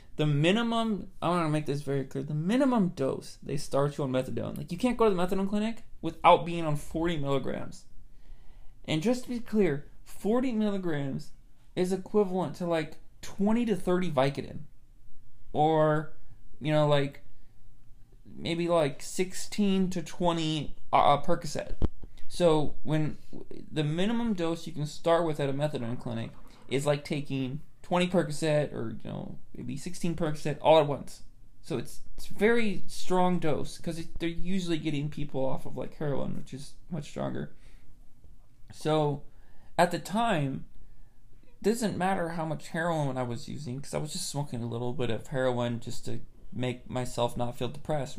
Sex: male